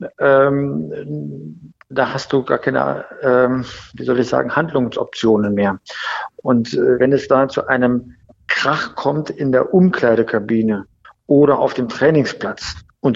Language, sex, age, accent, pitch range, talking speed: German, male, 50-69, German, 120-140 Hz, 125 wpm